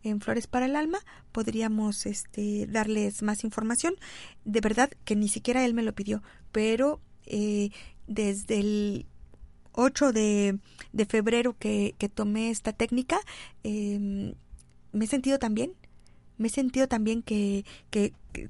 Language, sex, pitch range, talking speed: Spanish, female, 210-255 Hz, 145 wpm